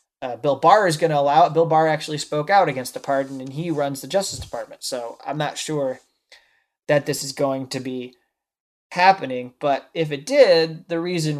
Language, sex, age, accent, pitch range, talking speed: English, male, 20-39, American, 135-160 Hz, 205 wpm